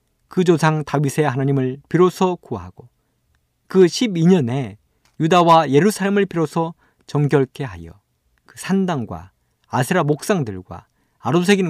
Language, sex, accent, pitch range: Korean, male, native, 115-185 Hz